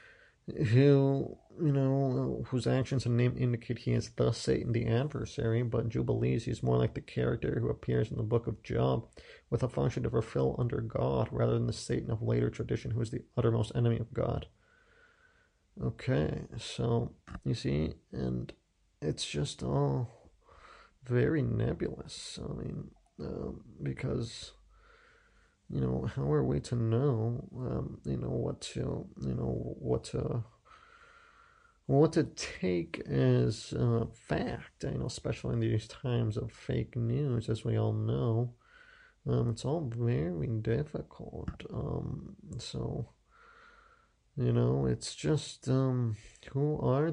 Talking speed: 145 wpm